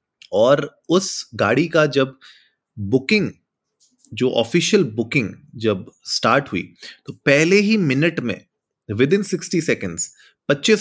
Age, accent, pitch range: 30-49, native, 115-150 Hz